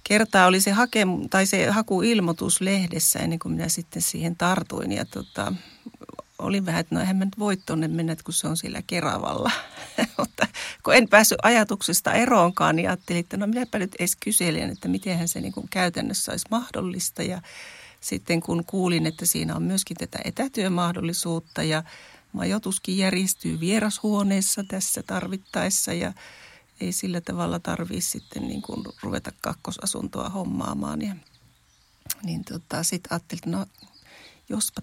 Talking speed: 145 wpm